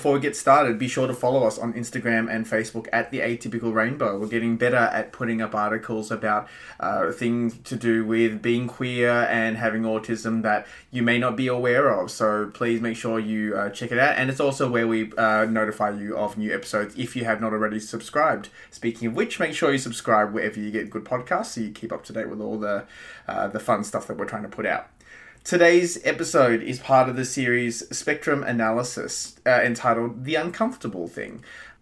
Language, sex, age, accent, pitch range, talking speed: English, male, 20-39, Australian, 110-130 Hz, 215 wpm